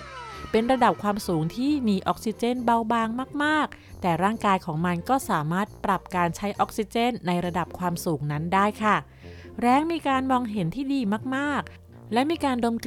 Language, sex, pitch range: Thai, female, 175-235 Hz